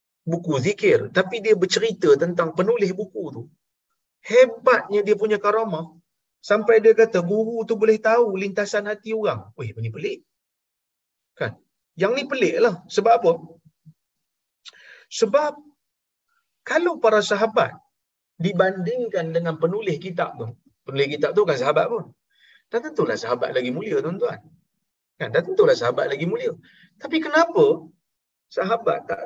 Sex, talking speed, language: male, 130 wpm, Malayalam